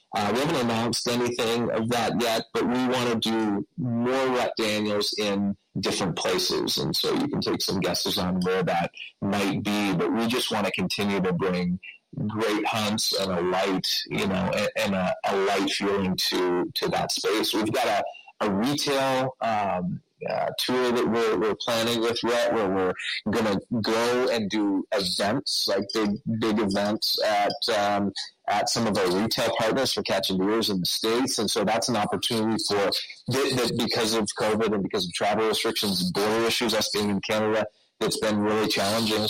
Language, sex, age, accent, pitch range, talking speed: English, male, 30-49, American, 95-120 Hz, 190 wpm